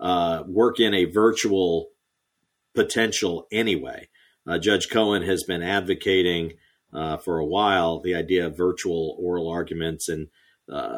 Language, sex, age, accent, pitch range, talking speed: English, male, 50-69, American, 85-105 Hz, 135 wpm